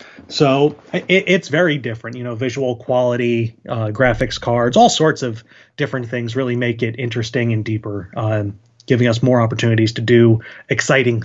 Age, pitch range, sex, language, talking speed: 30-49, 120-150 Hz, male, English, 160 wpm